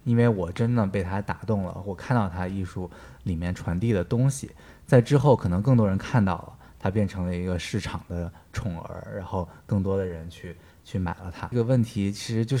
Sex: male